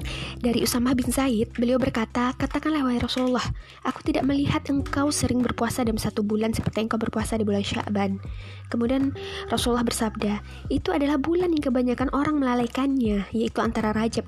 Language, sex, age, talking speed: Indonesian, female, 20-39, 155 wpm